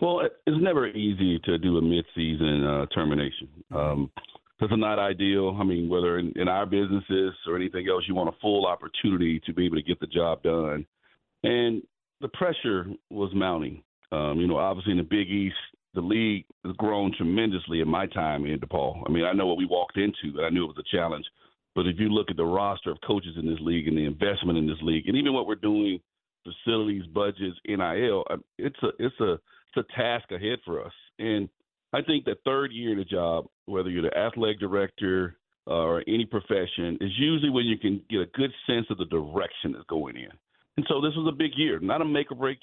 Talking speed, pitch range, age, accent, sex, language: 215 wpm, 85-110 Hz, 40-59, American, male, English